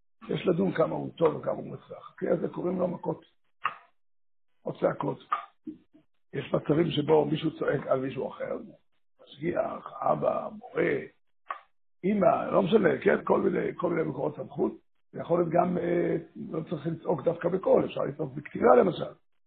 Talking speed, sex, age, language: 150 wpm, male, 60-79, Hebrew